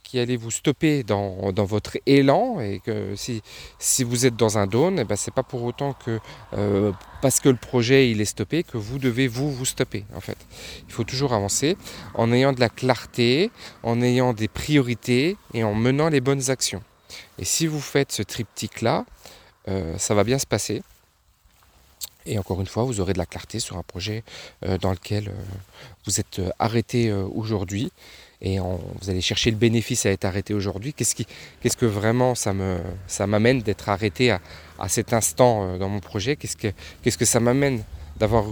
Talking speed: 195 wpm